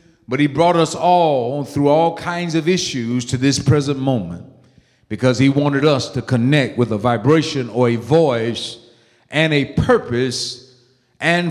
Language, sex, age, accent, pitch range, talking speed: English, male, 50-69, American, 125-160 Hz, 155 wpm